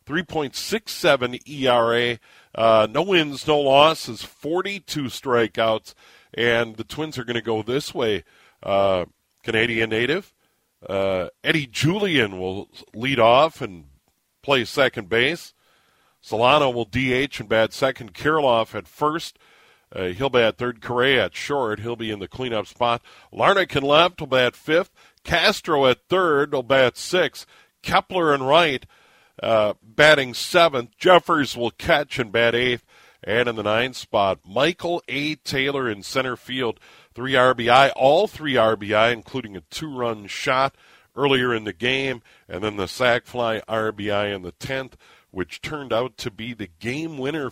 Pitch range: 110-135 Hz